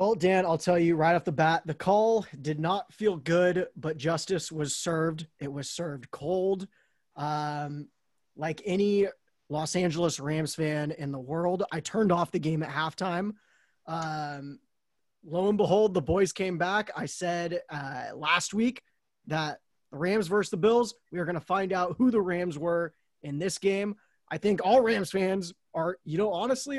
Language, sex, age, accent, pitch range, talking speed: English, male, 20-39, American, 155-195 Hz, 180 wpm